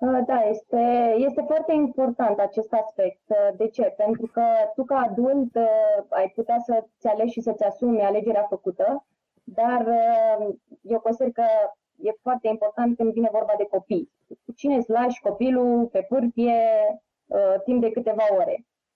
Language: Romanian